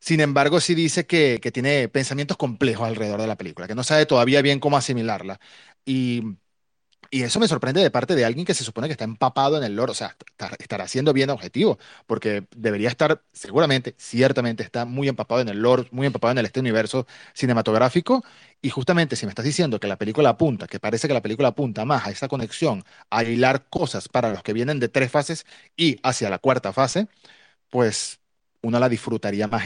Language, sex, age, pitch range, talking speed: Spanish, male, 30-49, 110-140 Hz, 205 wpm